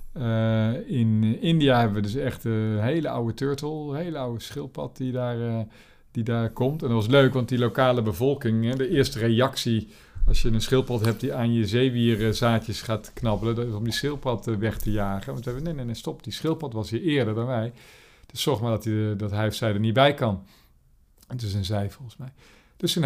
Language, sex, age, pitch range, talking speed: Dutch, male, 50-69, 110-130 Hz, 215 wpm